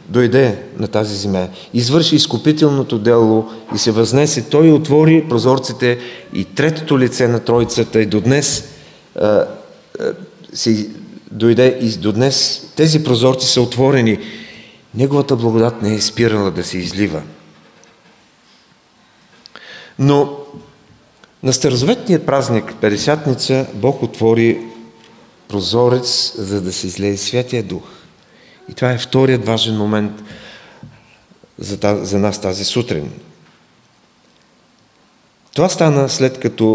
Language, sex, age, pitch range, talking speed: English, male, 40-59, 105-135 Hz, 110 wpm